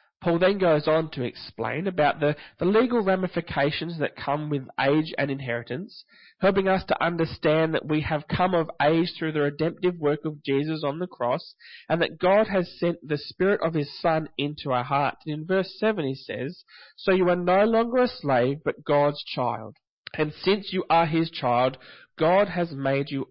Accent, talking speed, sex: Australian, 190 wpm, male